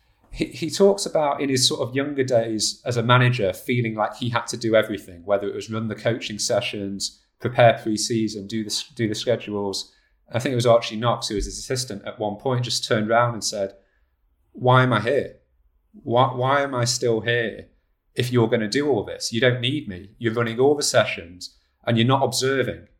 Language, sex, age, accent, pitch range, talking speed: English, male, 30-49, British, 105-130 Hz, 210 wpm